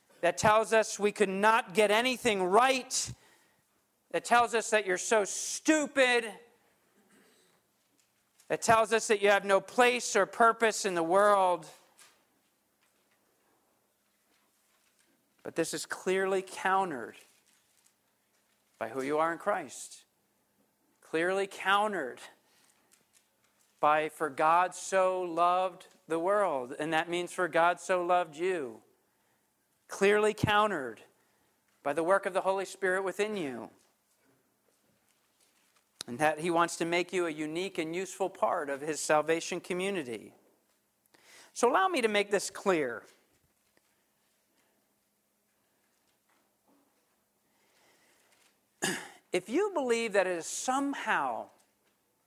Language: English